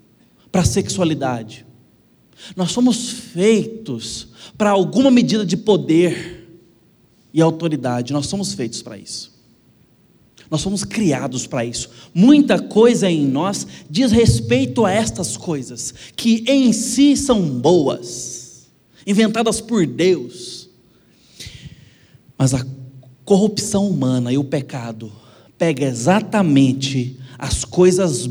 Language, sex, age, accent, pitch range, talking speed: Portuguese, male, 20-39, Brazilian, 130-205 Hz, 110 wpm